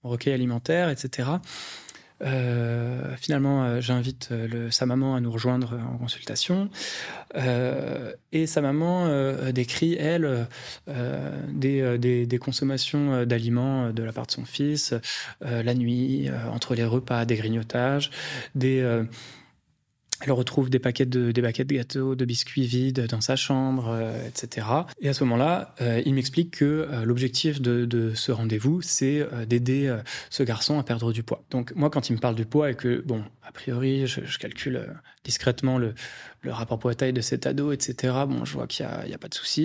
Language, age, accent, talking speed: French, 20-39, French, 180 wpm